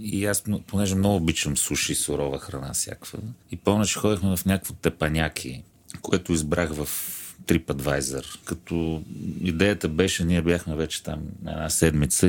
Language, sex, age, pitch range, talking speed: Bulgarian, male, 40-59, 75-90 Hz, 140 wpm